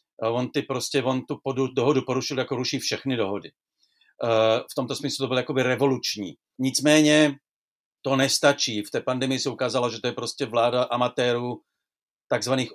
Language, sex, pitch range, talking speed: Czech, male, 120-150 Hz, 165 wpm